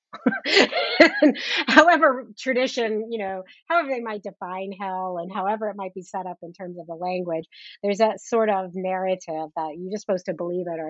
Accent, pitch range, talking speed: American, 175-205 Hz, 185 wpm